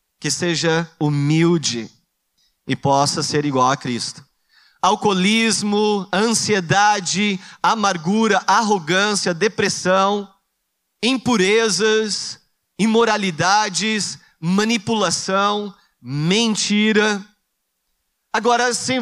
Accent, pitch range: Brazilian, 160-225 Hz